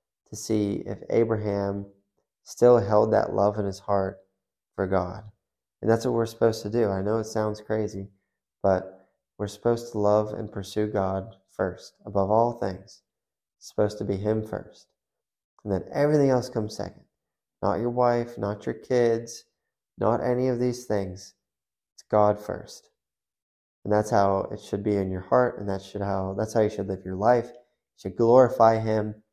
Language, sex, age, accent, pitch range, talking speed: English, male, 20-39, American, 95-110 Hz, 180 wpm